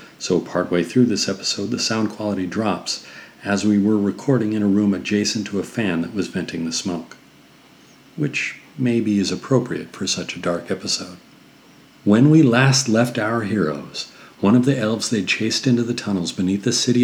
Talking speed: 185 wpm